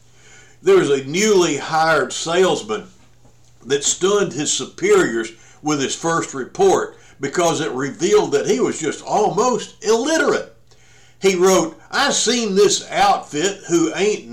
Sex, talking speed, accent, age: male, 130 wpm, American, 60-79